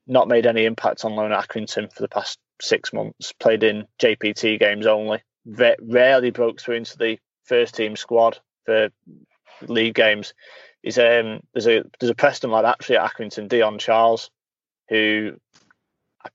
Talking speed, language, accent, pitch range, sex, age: 165 wpm, English, British, 110-130 Hz, male, 20-39